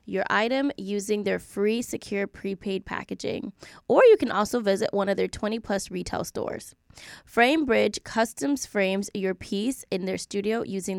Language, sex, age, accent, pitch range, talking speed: English, female, 10-29, American, 195-230 Hz, 160 wpm